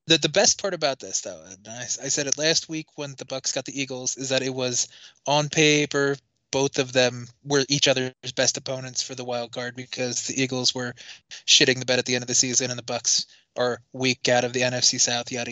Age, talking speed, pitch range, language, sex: 20-39, 240 wpm, 125-155 Hz, English, male